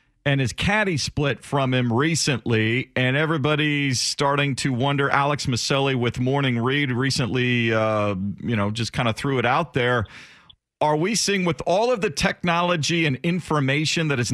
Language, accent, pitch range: English, American, 130-160 Hz